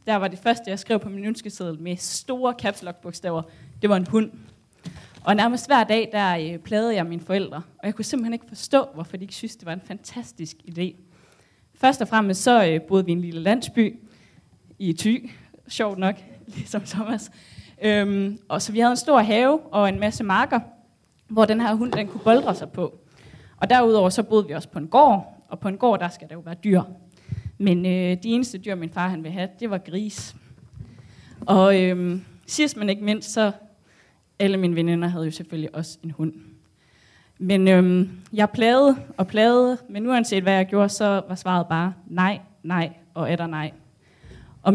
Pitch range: 170-215 Hz